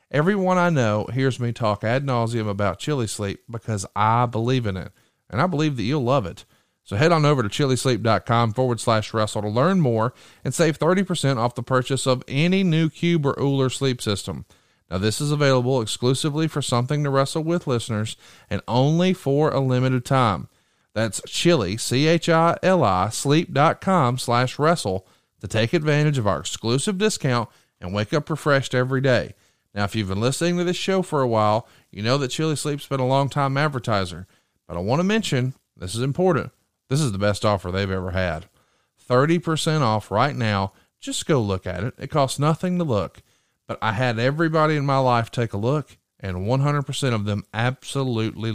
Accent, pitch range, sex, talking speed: American, 105-150 Hz, male, 185 wpm